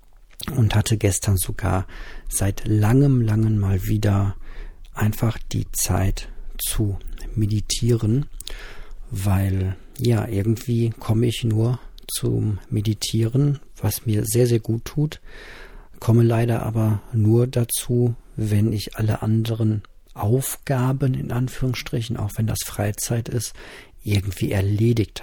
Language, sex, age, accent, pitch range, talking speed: German, male, 50-69, German, 100-120 Hz, 110 wpm